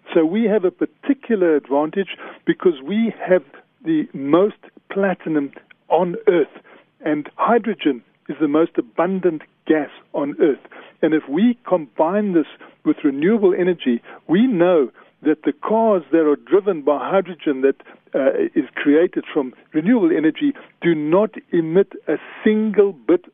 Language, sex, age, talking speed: English, male, 50-69, 140 wpm